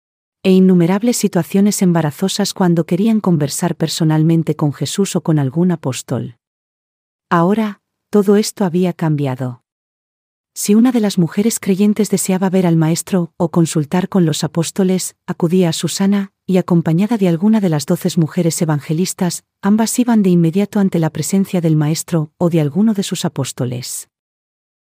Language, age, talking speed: Spanish, 40-59, 145 wpm